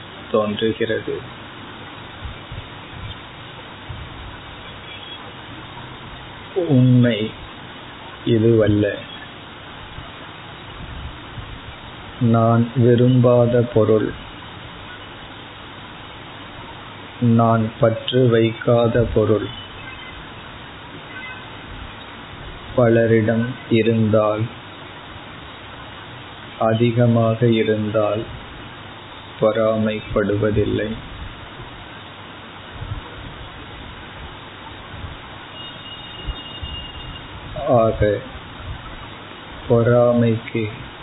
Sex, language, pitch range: male, Tamil, 105-120 Hz